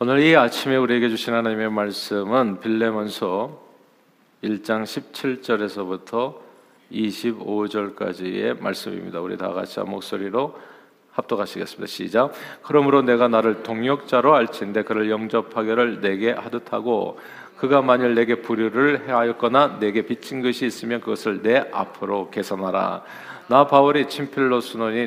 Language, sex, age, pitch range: Korean, male, 40-59, 110-125 Hz